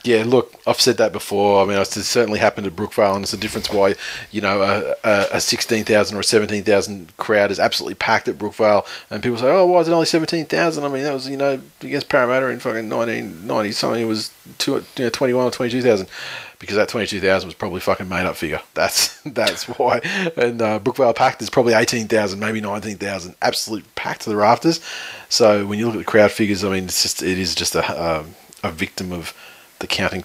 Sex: male